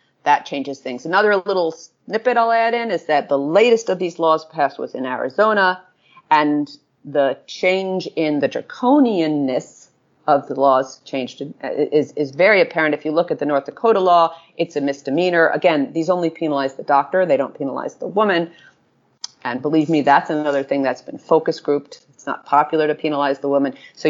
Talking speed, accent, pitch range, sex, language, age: 185 wpm, American, 145-185 Hz, female, English, 40-59